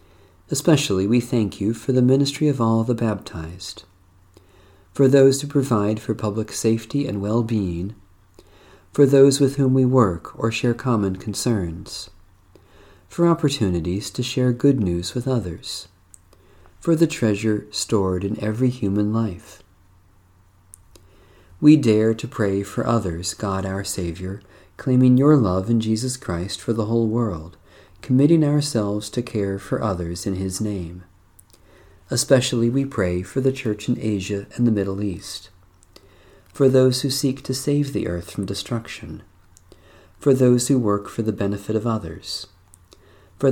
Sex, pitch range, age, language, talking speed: male, 90-125 Hz, 40-59, English, 145 wpm